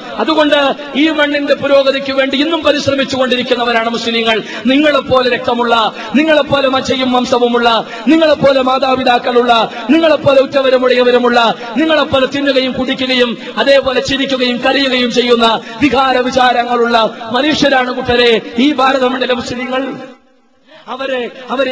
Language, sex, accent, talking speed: Malayalam, male, native, 90 wpm